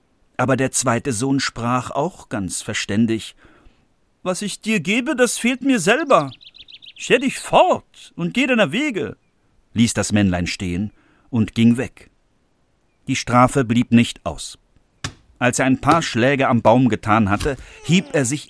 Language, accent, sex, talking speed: German, German, male, 150 wpm